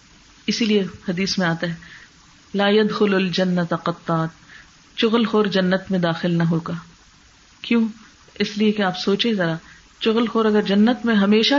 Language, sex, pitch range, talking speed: Urdu, female, 180-225 Hz, 155 wpm